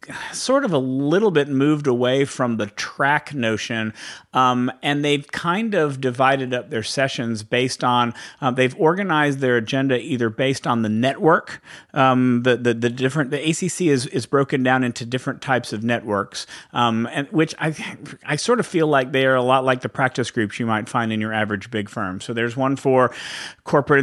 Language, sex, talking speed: English, male, 195 wpm